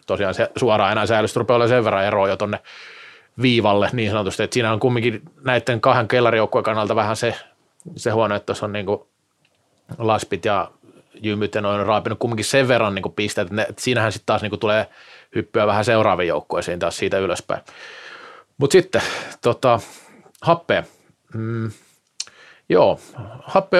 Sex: male